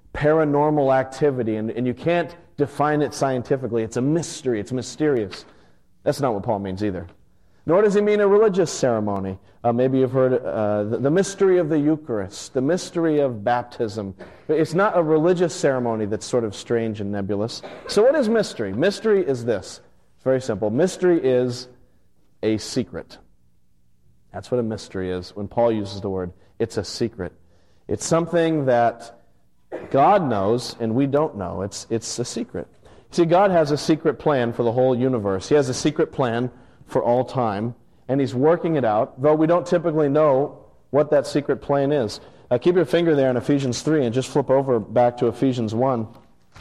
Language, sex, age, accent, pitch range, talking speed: English, male, 40-59, American, 110-150 Hz, 185 wpm